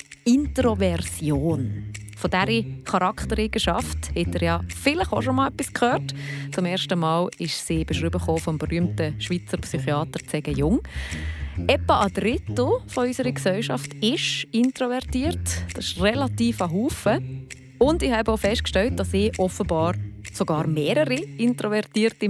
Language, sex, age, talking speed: German, female, 30-49, 130 wpm